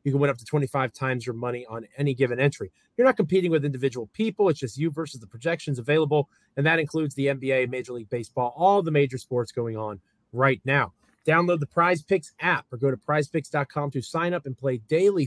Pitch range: 130-170 Hz